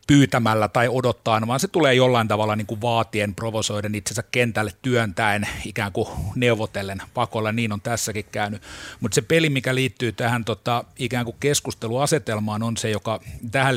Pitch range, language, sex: 110-125 Hz, Finnish, male